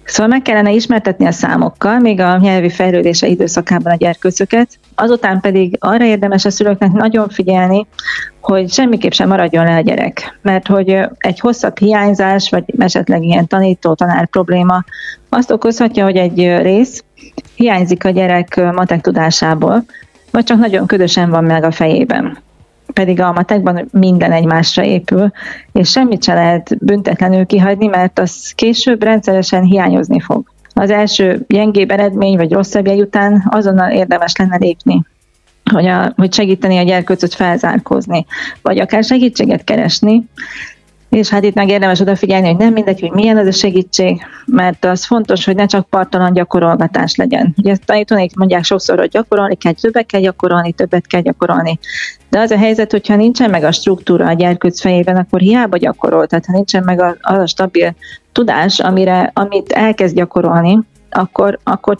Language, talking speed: Hungarian, 155 wpm